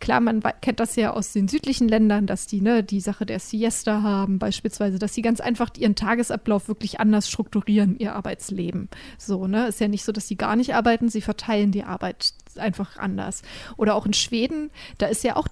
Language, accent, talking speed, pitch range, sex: German, German, 200 wpm, 200-230 Hz, female